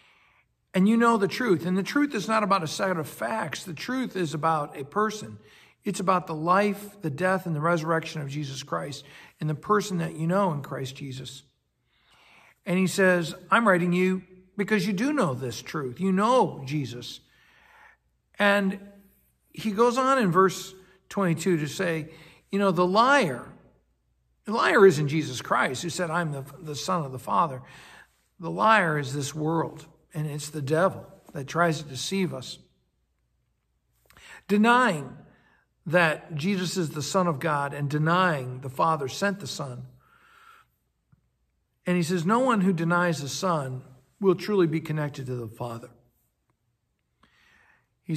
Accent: American